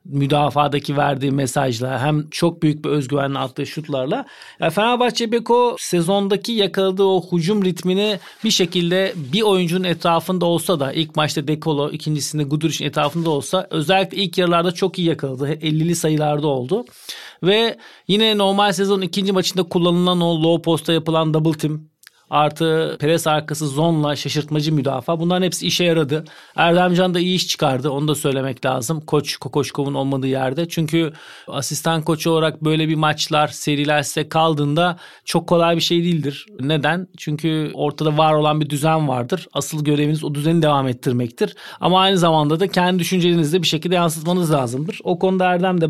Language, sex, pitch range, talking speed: Turkish, male, 150-185 Hz, 155 wpm